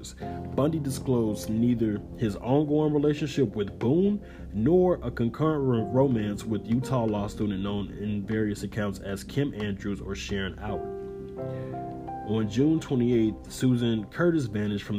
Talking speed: 130 wpm